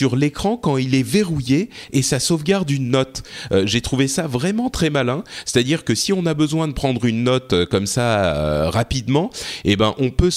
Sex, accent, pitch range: male, French, 100-145 Hz